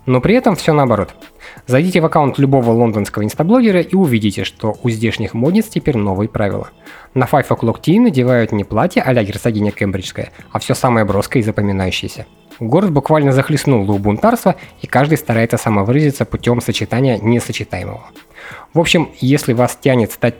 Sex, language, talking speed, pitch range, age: male, Russian, 155 wpm, 110-155 Hz, 20-39